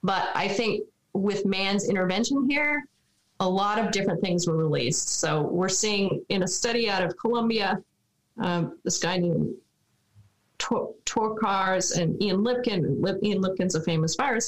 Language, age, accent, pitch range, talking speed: English, 30-49, American, 170-210 Hz, 160 wpm